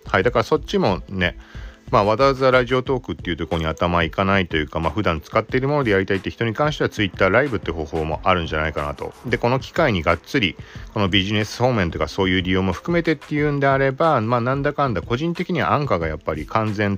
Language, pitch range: Japanese, 85-135 Hz